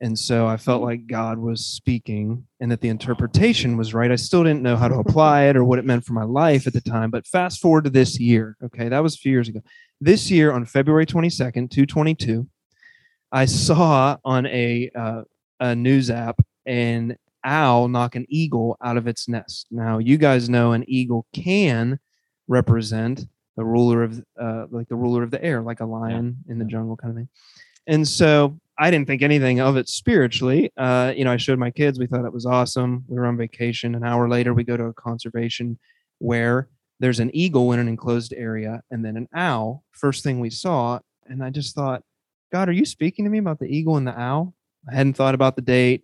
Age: 30-49